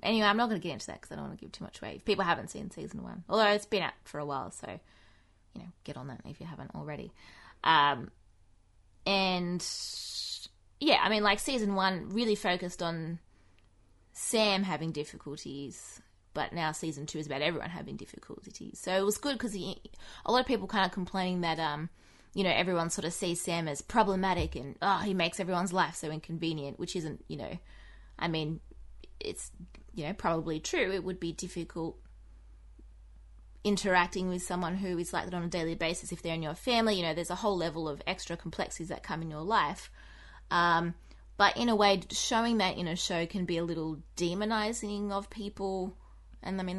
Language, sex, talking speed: English, female, 205 wpm